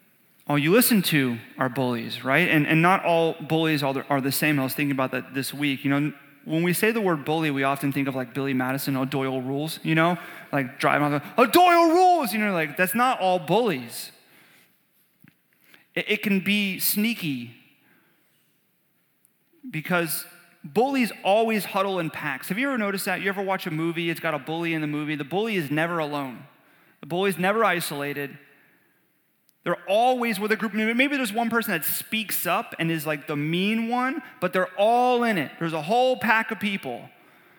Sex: male